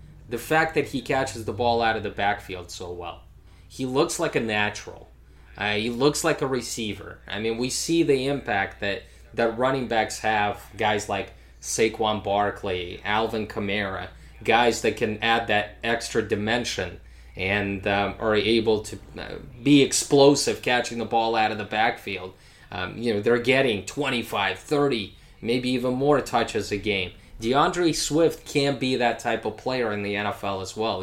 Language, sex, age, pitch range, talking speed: English, male, 20-39, 105-145 Hz, 170 wpm